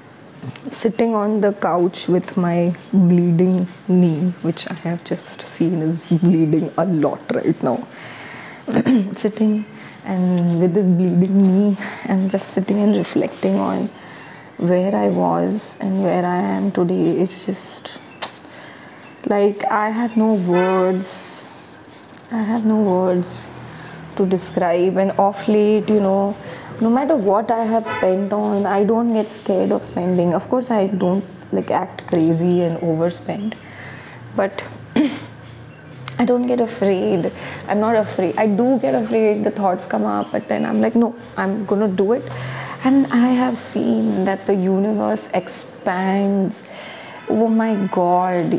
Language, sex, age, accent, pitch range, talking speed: English, female, 20-39, Indian, 180-215 Hz, 145 wpm